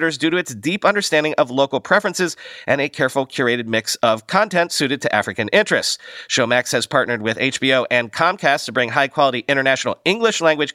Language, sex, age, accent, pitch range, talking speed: English, male, 40-59, American, 120-165 Hz, 180 wpm